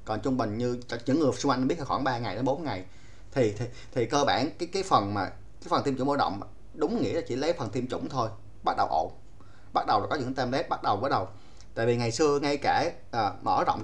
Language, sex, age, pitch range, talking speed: Vietnamese, male, 20-39, 105-140 Hz, 260 wpm